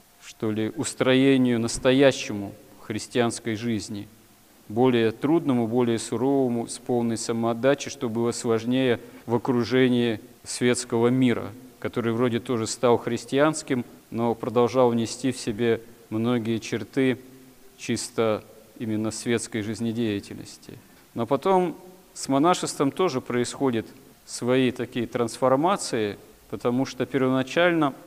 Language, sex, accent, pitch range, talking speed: Russian, male, native, 115-140 Hz, 105 wpm